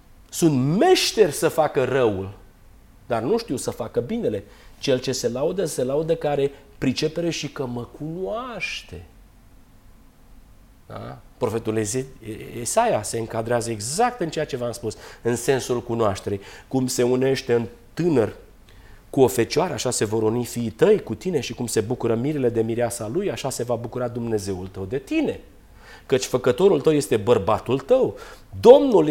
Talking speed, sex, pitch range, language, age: 155 wpm, male, 115-150 Hz, Romanian, 40-59